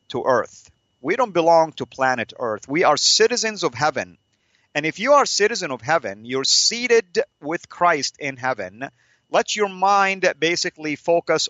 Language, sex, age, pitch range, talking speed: English, male, 40-59, 125-165 Hz, 165 wpm